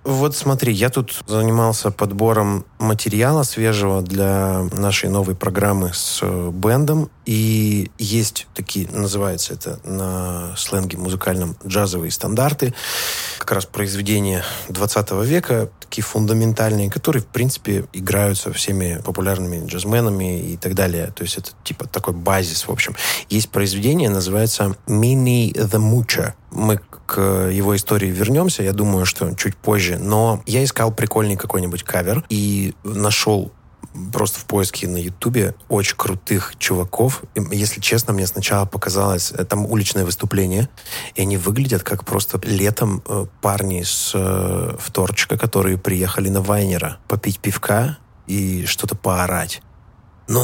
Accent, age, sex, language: native, 20-39, male, Russian